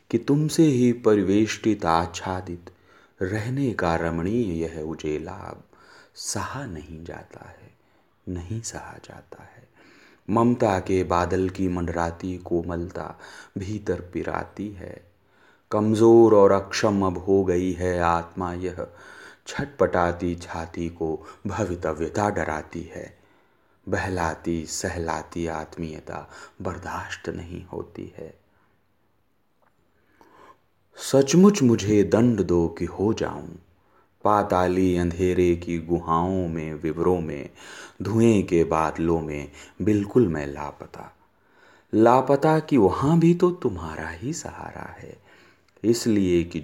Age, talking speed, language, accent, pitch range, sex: 30-49, 105 wpm, Hindi, native, 85-105 Hz, male